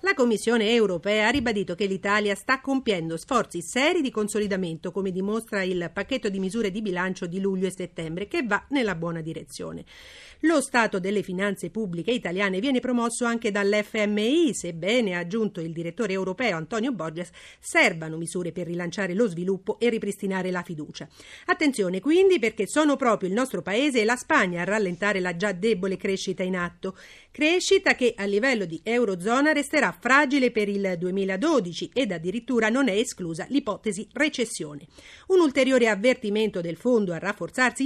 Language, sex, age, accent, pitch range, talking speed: Italian, female, 40-59, native, 185-250 Hz, 160 wpm